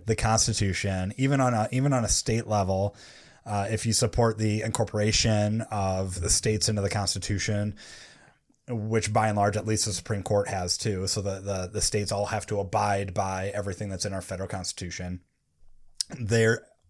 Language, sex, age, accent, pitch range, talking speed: English, male, 30-49, American, 100-115 Hz, 170 wpm